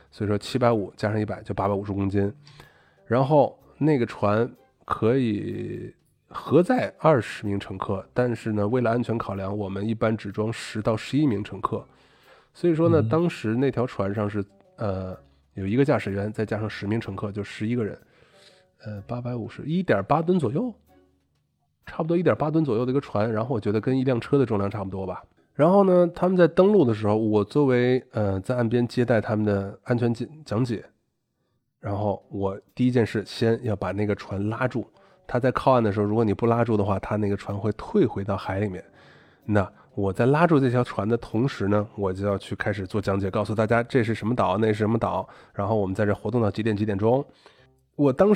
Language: Chinese